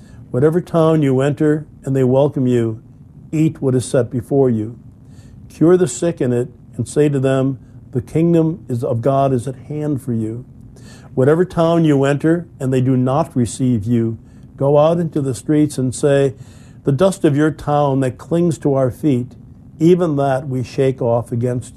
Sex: male